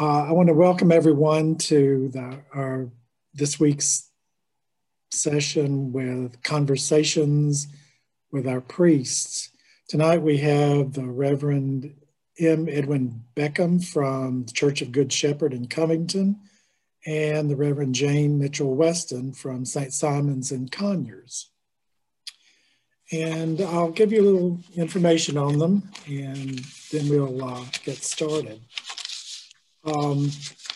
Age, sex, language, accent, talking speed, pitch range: 50-69, male, English, American, 115 wpm, 140-160 Hz